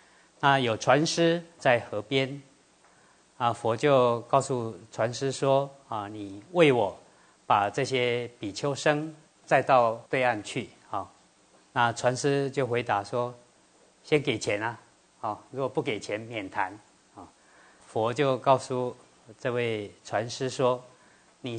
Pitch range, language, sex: 120-150 Hz, Chinese, male